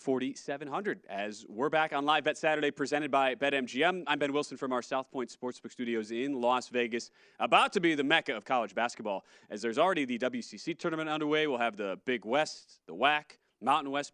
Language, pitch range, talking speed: English, 120-145 Hz, 200 wpm